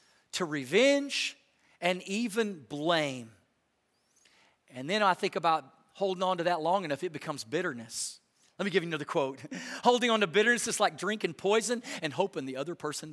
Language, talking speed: English, 175 wpm